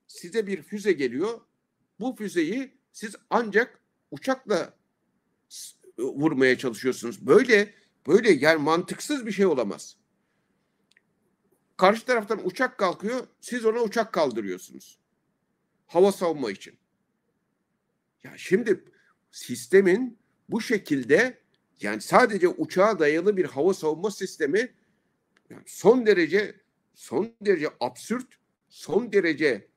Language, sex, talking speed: Turkish, male, 105 wpm